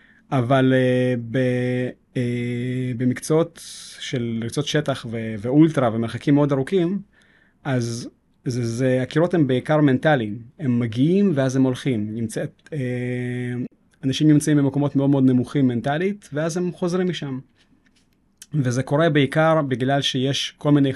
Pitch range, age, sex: 125-150 Hz, 30-49, male